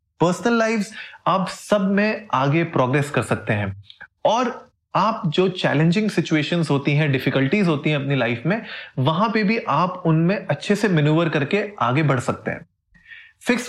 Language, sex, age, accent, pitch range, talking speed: Hindi, male, 30-49, native, 140-190 Hz, 160 wpm